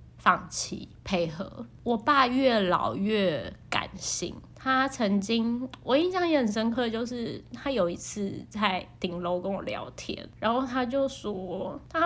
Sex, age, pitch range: female, 20-39, 215-285 Hz